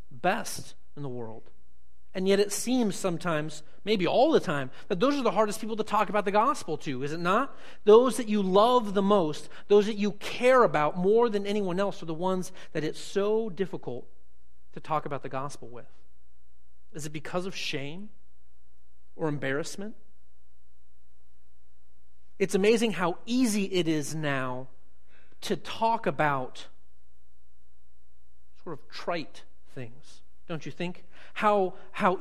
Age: 40-59